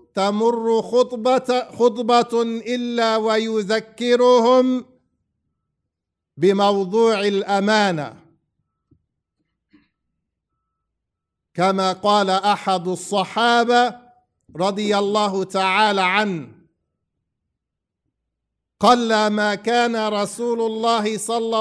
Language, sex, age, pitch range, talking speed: English, male, 50-69, 195-230 Hz, 60 wpm